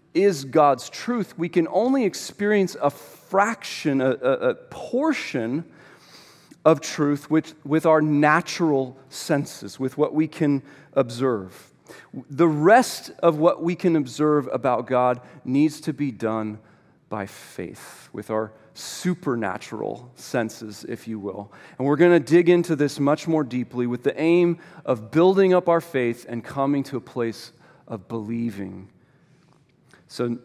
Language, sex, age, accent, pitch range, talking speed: English, male, 40-59, American, 130-170 Hz, 145 wpm